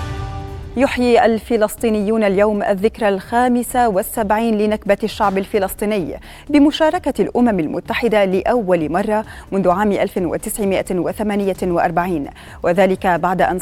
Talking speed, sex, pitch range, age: 90 wpm, female, 185-230 Hz, 30-49